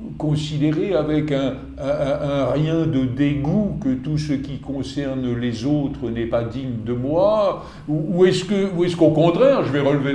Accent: French